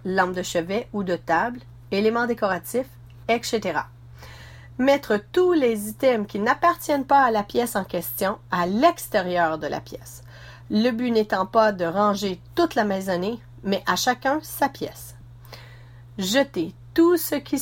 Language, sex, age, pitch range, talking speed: French, female, 40-59, 170-245 Hz, 150 wpm